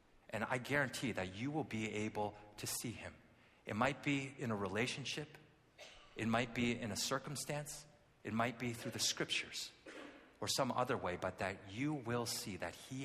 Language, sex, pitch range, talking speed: English, male, 115-170 Hz, 185 wpm